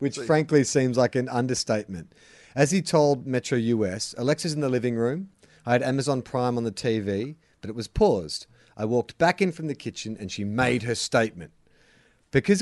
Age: 40-59